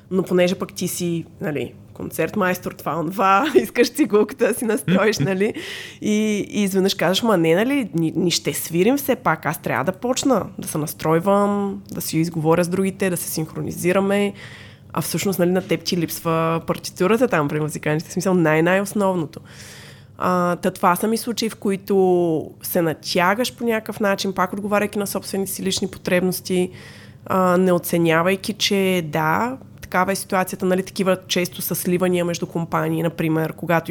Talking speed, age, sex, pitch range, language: 165 wpm, 20-39, female, 165-195 Hz, Bulgarian